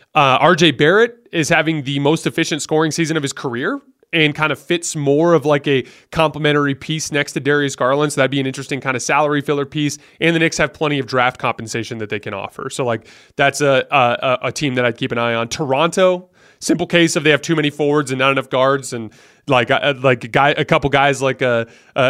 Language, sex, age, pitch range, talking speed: English, male, 20-39, 130-155 Hz, 235 wpm